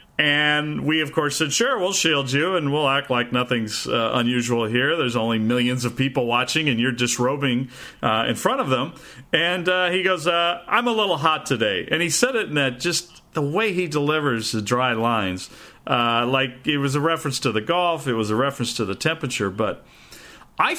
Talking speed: 210 wpm